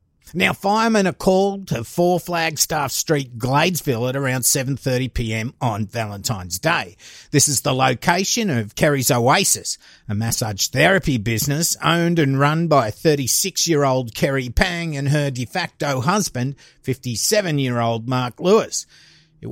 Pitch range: 125-180 Hz